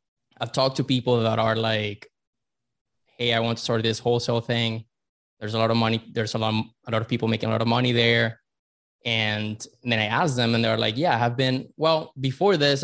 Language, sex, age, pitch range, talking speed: English, male, 20-39, 115-135 Hz, 225 wpm